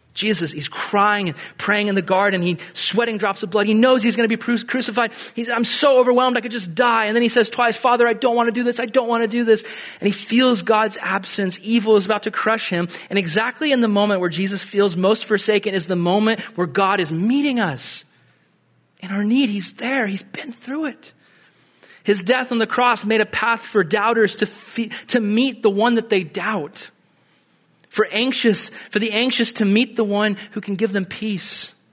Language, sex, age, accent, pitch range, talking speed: English, male, 30-49, American, 170-230 Hz, 220 wpm